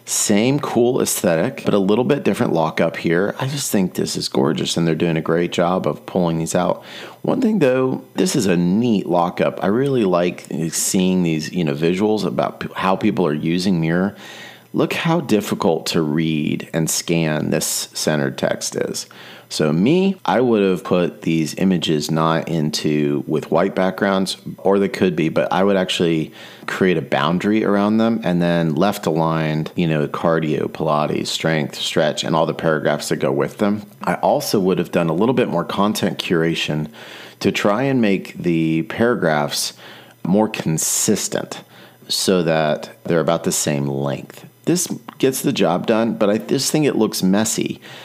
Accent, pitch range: American, 80-105 Hz